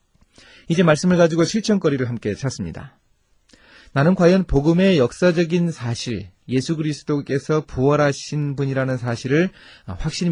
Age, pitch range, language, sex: 30-49, 110-155 Hz, Korean, male